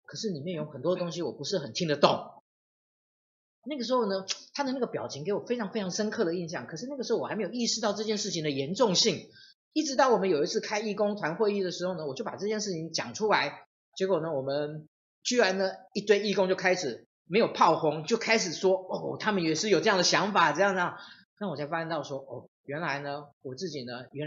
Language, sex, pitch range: Chinese, male, 150-215 Hz